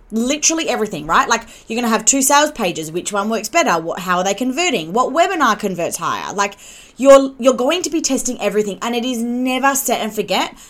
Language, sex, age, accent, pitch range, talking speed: English, female, 20-39, Australian, 205-275 Hz, 220 wpm